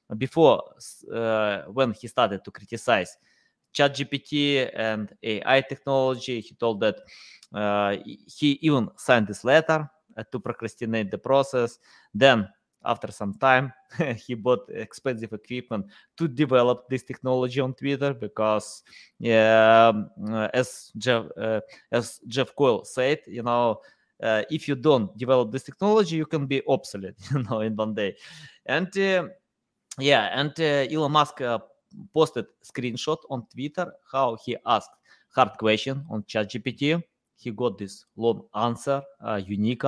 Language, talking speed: English, 145 wpm